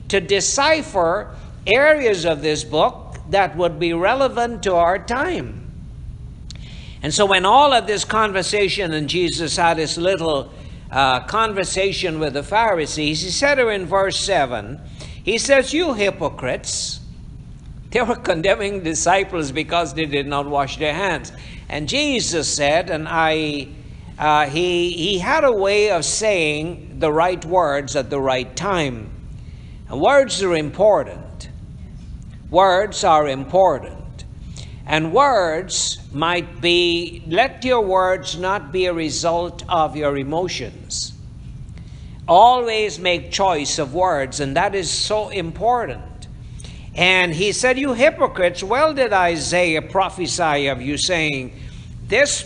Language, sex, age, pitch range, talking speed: English, male, 60-79, 150-200 Hz, 130 wpm